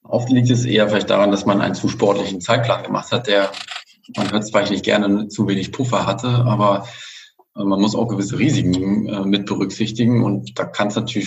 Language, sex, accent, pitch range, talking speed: German, male, German, 100-120 Hz, 195 wpm